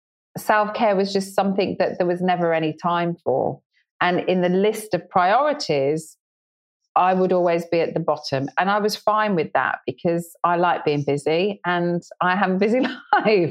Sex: female